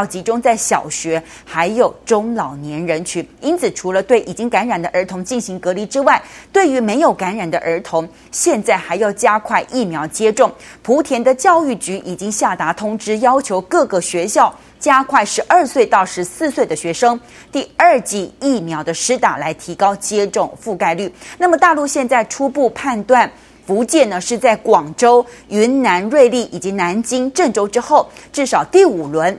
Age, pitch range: 30-49, 180-260 Hz